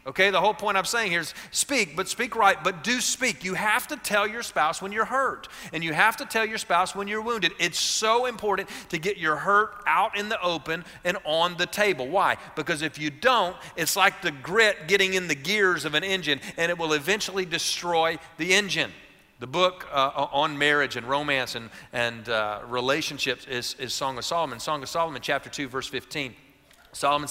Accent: American